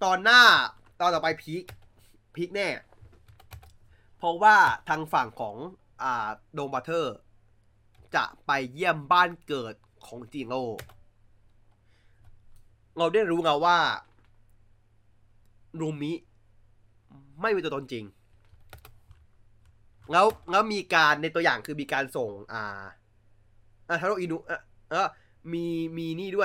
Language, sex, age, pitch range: Thai, male, 20-39, 105-155 Hz